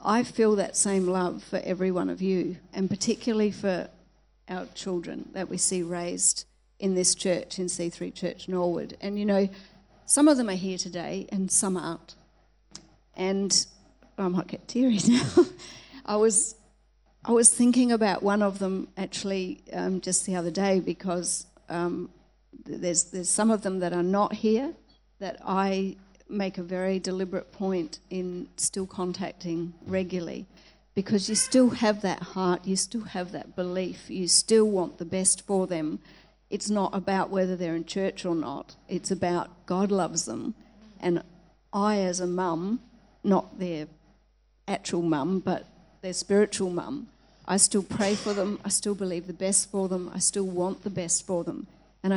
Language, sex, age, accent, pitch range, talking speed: English, female, 50-69, Australian, 180-200 Hz, 170 wpm